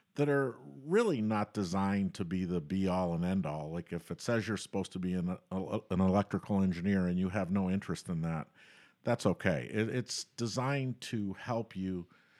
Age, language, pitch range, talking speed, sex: 50-69, English, 90-105 Hz, 190 wpm, male